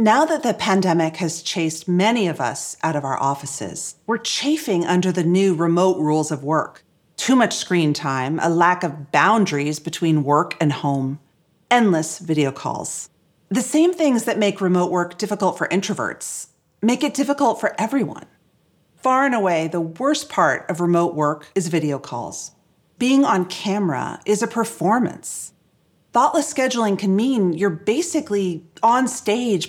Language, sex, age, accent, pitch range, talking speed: English, female, 40-59, American, 165-235 Hz, 160 wpm